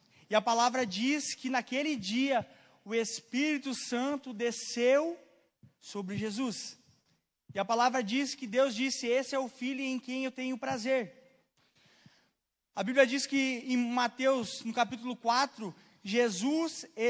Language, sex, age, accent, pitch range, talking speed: Portuguese, male, 20-39, Brazilian, 210-260 Hz, 140 wpm